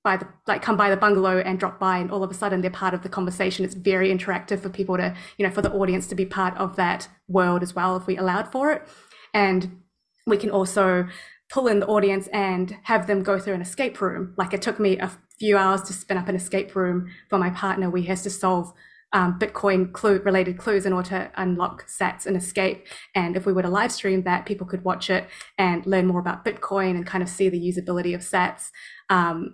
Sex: female